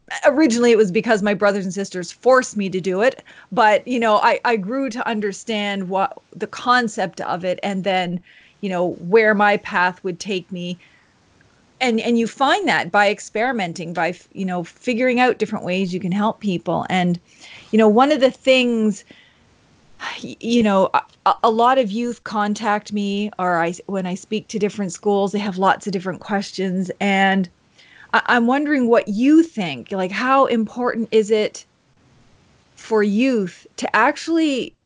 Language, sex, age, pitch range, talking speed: English, female, 30-49, 190-245 Hz, 170 wpm